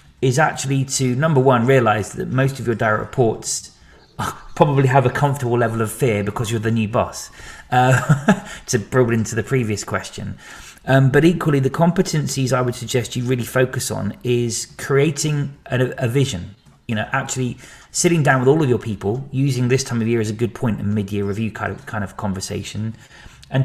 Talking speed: 195 wpm